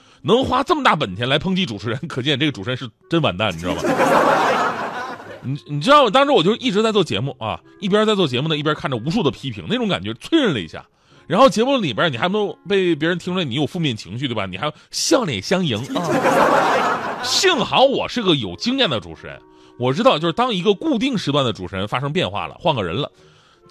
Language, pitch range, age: Chinese, 135-215 Hz, 30-49